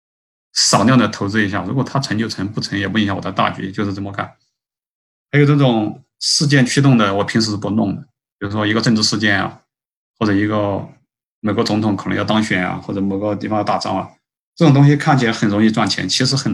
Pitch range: 100-125 Hz